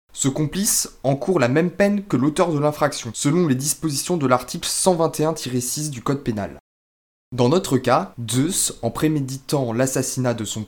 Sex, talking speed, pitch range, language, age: male, 155 wpm, 120-160 Hz, French, 20-39